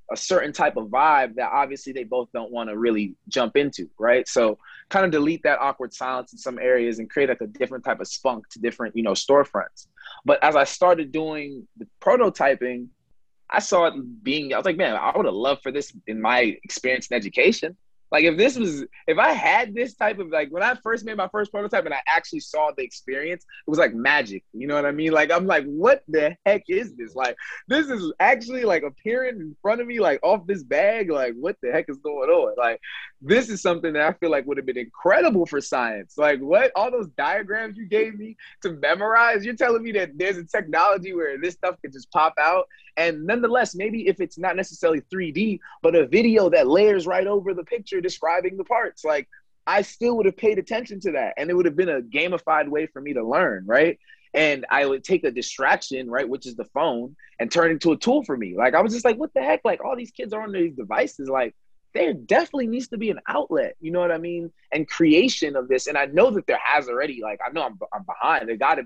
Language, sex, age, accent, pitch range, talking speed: English, male, 20-39, American, 140-220 Hz, 240 wpm